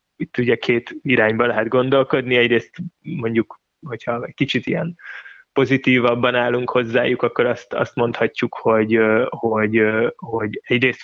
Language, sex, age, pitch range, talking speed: Hungarian, male, 20-39, 115-130 Hz, 125 wpm